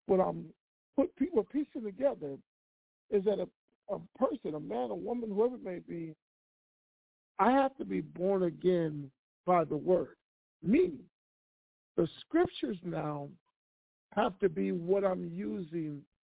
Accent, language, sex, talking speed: American, English, male, 145 wpm